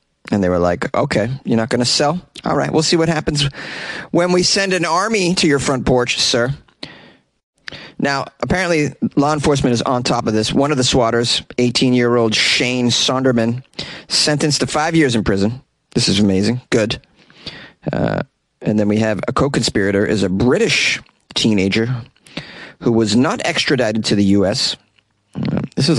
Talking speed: 170 wpm